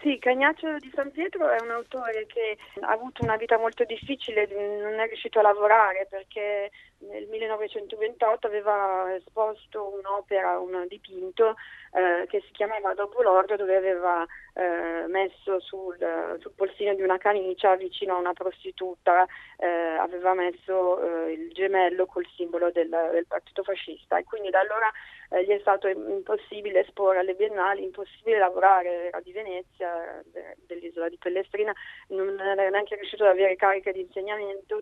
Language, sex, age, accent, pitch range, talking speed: Italian, female, 20-39, native, 180-215 Hz, 155 wpm